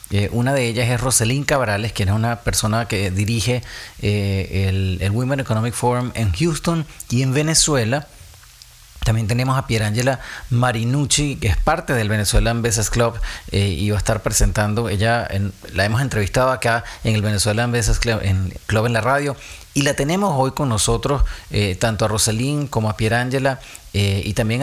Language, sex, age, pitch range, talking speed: English, male, 30-49, 105-130 Hz, 180 wpm